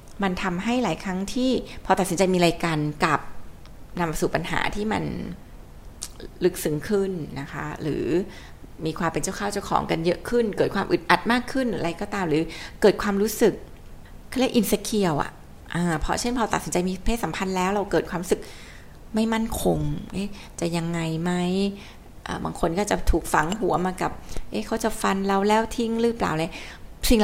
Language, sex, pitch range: Thai, female, 160-210 Hz